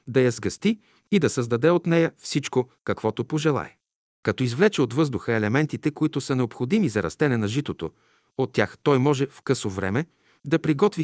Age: 50-69